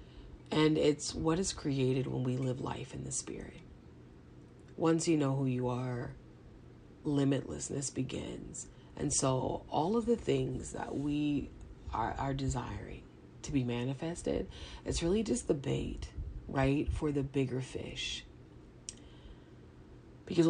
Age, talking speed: 30-49, 130 wpm